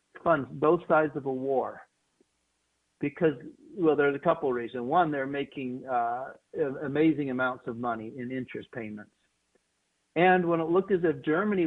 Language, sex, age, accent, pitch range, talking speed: English, male, 50-69, American, 130-165 Hz, 160 wpm